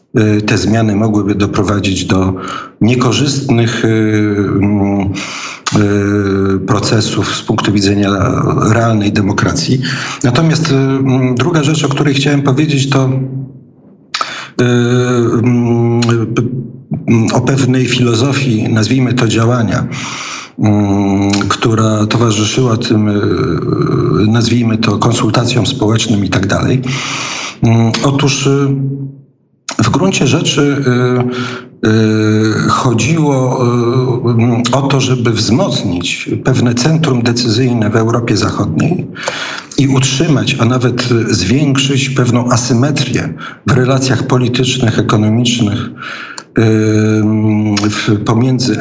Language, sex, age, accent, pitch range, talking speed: Polish, male, 50-69, native, 110-130 Hz, 75 wpm